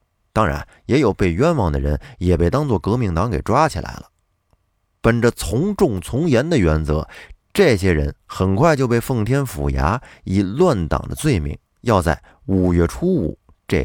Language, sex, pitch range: Chinese, male, 80-120 Hz